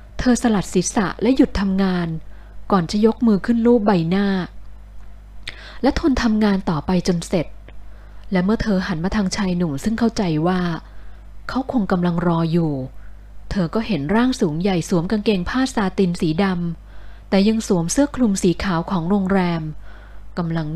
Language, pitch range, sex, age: Thai, 150-210 Hz, female, 20-39